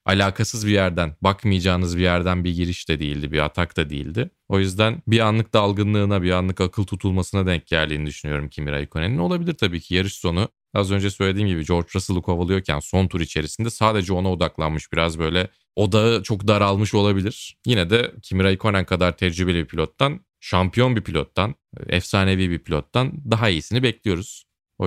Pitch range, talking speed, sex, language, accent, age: 90-110 Hz, 170 wpm, male, Turkish, native, 30-49